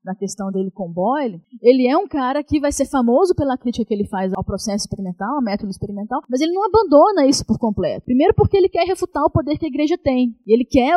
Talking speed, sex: 240 wpm, female